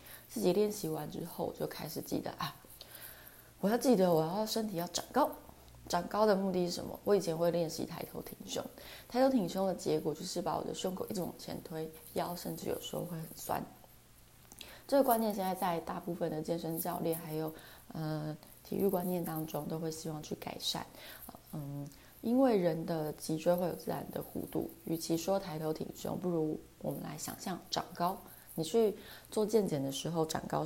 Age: 20-39